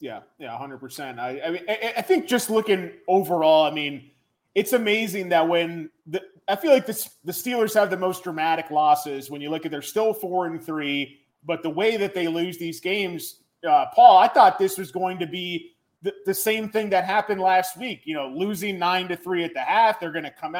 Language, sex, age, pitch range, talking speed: English, male, 30-49, 165-205 Hz, 225 wpm